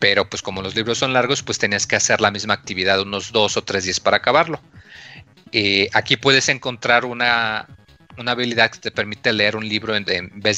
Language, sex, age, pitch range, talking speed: Spanish, male, 40-59, 100-120 Hz, 210 wpm